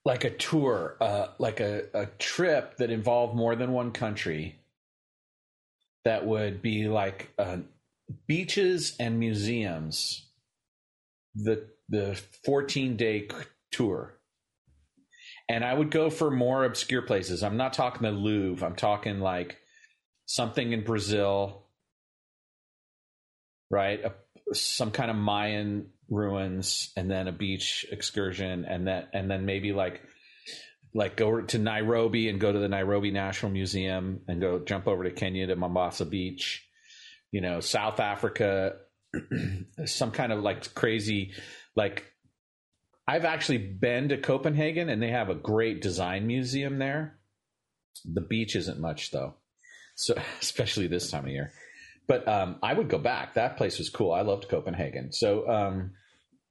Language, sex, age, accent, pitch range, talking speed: English, male, 40-59, American, 95-125 Hz, 140 wpm